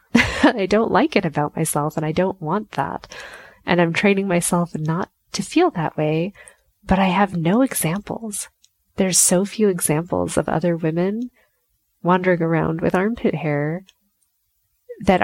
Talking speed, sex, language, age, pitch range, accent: 150 wpm, female, English, 20-39, 155-190 Hz, American